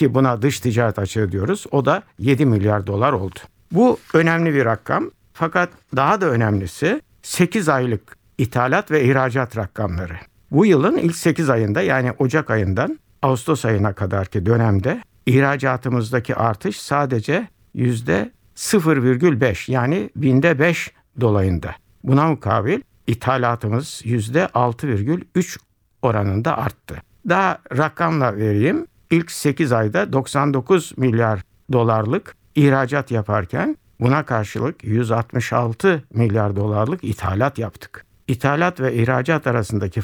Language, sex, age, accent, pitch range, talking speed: Turkish, male, 60-79, native, 105-140 Hz, 110 wpm